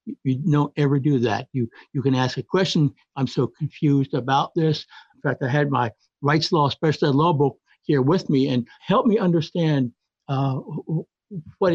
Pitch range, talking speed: 135-160 Hz, 180 wpm